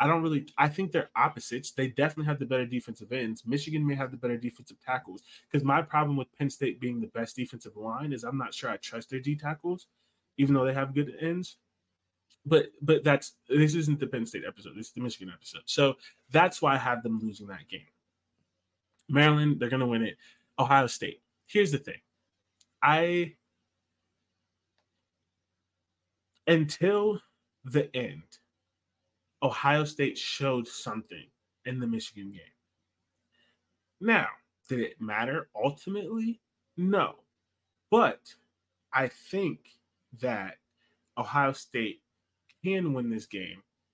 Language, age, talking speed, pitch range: English, 20-39, 145 wpm, 100-145 Hz